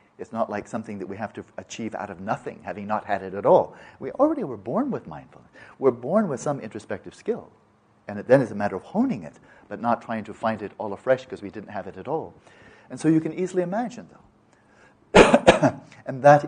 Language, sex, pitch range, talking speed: English, male, 105-130 Hz, 230 wpm